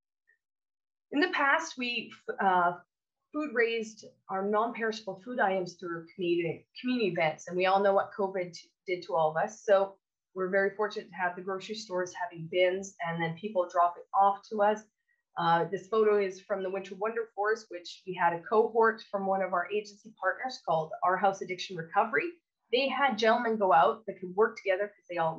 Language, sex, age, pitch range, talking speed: English, female, 30-49, 180-225 Hz, 190 wpm